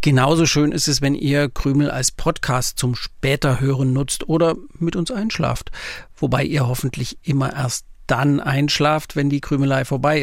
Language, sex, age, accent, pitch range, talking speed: German, male, 50-69, German, 130-160 Hz, 165 wpm